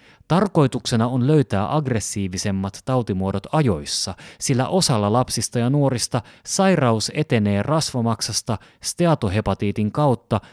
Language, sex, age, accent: Finnish, male, 30-49, native